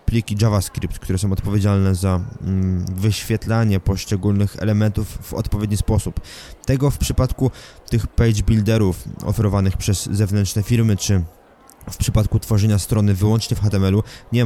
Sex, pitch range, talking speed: male, 100-115 Hz, 130 wpm